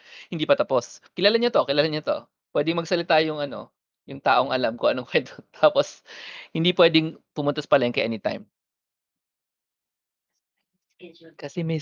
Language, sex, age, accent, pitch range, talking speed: English, male, 20-39, Filipino, 140-185 Hz, 140 wpm